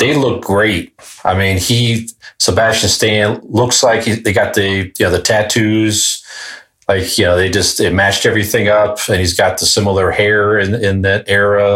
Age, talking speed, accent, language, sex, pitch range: 40-59, 190 wpm, American, English, male, 95-110 Hz